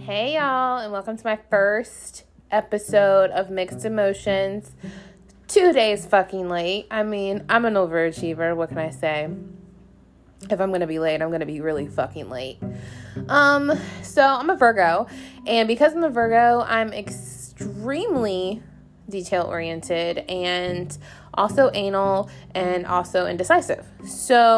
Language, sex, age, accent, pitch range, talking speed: English, female, 20-39, American, 180-255 Hz, 135 wpm